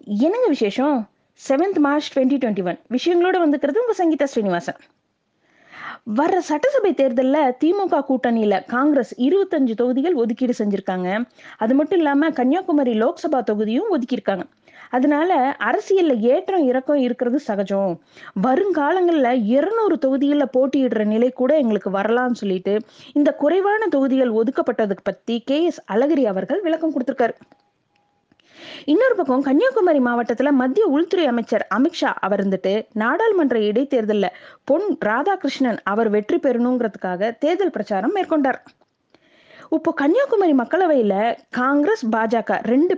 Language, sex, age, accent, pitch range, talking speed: Tamil, female, 20-39, native, 230-315 Hz, 95 wpm